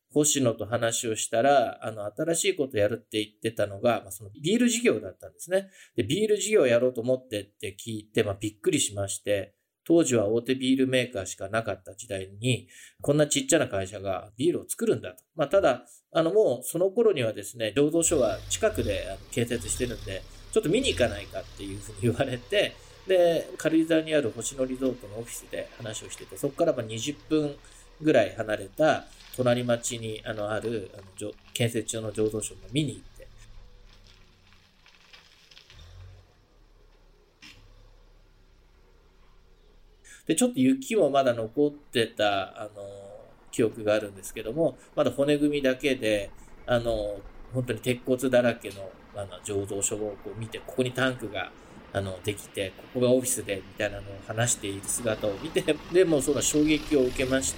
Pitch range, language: 100-135 Hz, Japanese